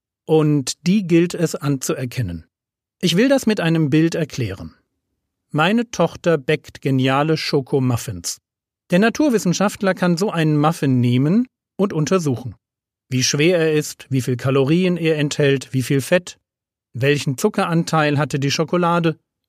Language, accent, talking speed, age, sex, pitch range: German, German, 130 wpm, 40-59, male, 130-180 Hz